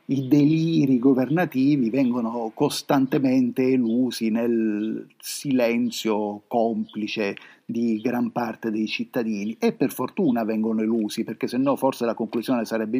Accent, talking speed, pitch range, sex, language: native, 120 wpm, 115-150 Hz, male, Italian